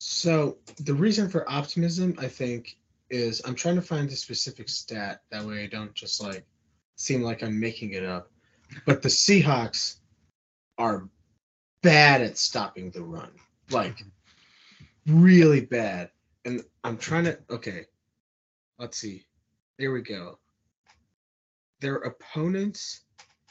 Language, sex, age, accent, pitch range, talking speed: English, male, 30-49, American, 110-150 Hz, 130 wpm